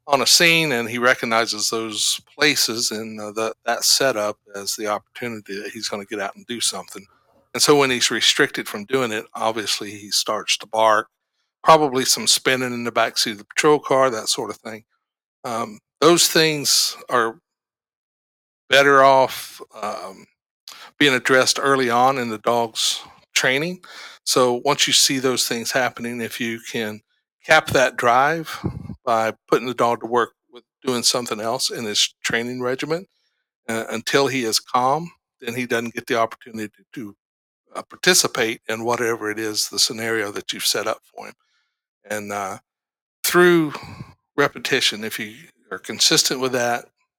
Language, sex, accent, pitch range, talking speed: English, male, American, 110-130 Hz, 165 wpm